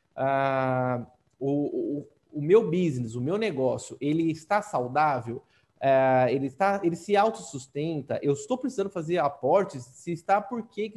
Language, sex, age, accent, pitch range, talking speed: Portuguese, male, 20-39, Brazilian, 150-210 Hz, 150 wpm